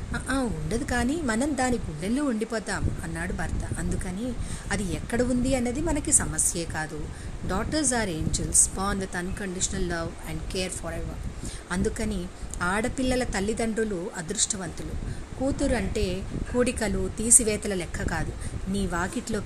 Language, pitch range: Telugu, 185-245 Hz